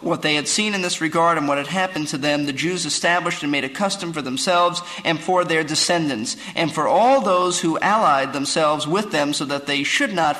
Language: English